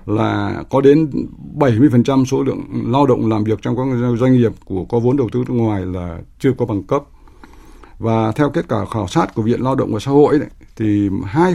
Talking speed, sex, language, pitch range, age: 225 wpm, male, Vietnamese, 105-130 Hz, 60-79